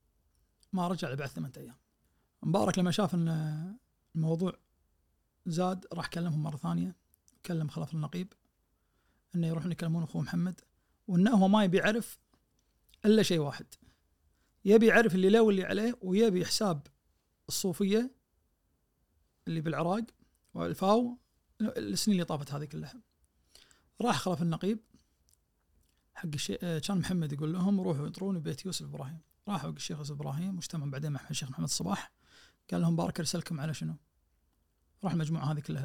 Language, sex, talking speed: Arabic, male, 135 wpm